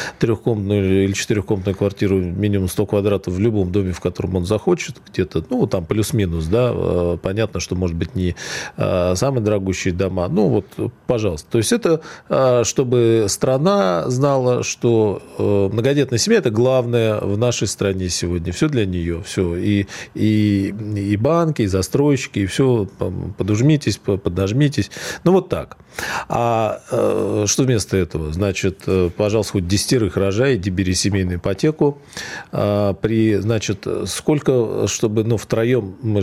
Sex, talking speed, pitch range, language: male, 135 wpm, 95-120 Hz, Russian